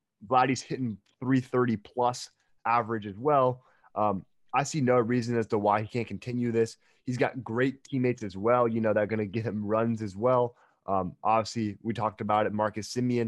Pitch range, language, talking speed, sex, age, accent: 110-125 Hz, English, 200 wpm, male, 20-39, American